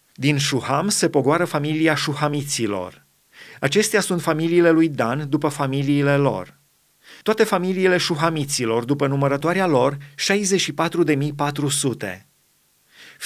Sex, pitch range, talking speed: male, 140-165 Hz, 95 wpm